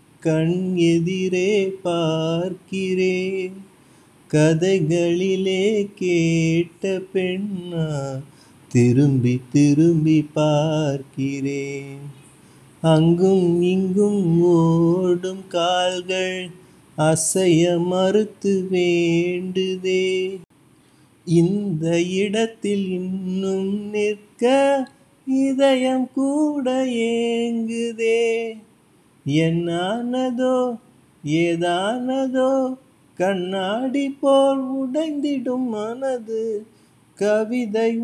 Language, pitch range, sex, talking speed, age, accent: Tamil, 175-245 Hz, male, 45 wpm, 30-49, native